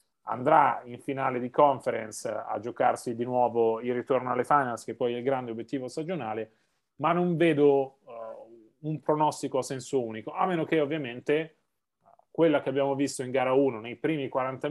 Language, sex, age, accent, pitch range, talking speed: Italian, male, 30-49, native, 125-145 Hz, 175 wpm